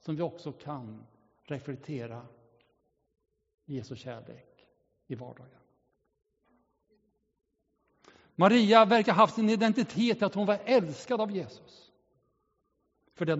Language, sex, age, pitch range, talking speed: Swedish, male, 60-79, 145-215 Hz, 105 wpm